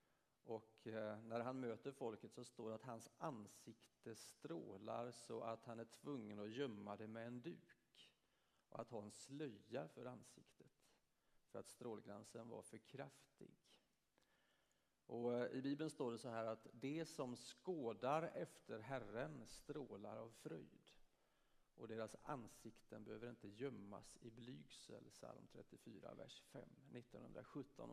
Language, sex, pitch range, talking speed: Swedish, male, 115-140 Hz, 135 wpm